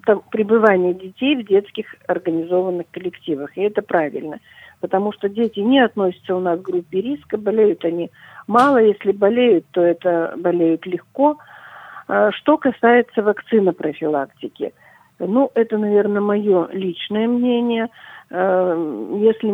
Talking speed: 120 wpm